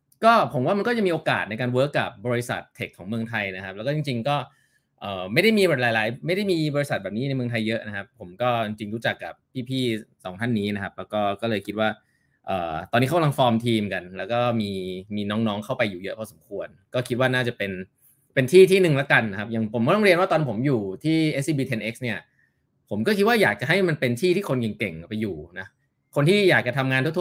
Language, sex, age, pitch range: Thai, male, 20-39, 110-140 Hz